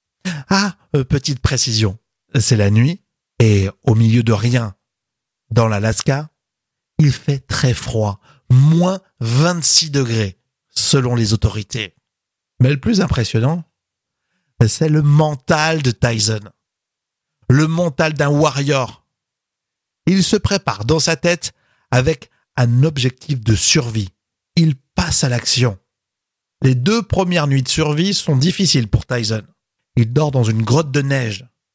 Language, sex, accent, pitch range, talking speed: French, male, French, 115-155 Hz, 130 wpm